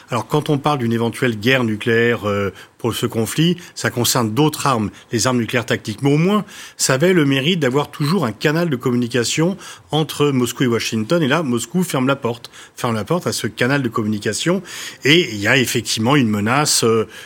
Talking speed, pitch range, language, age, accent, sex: 200 wpm, 120-150 Hz, French, 40-59, French, male